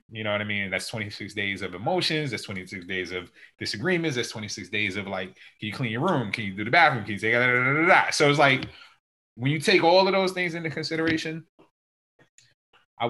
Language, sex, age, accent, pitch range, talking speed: English, male, 20-39, American, 95-125 Hz, 215 wpm